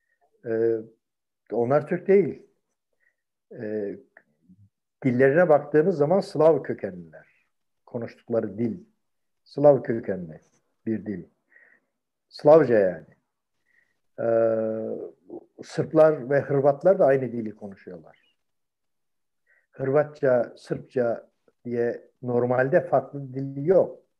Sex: male